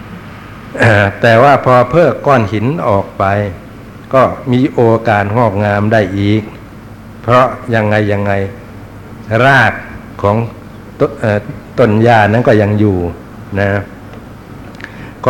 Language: Thai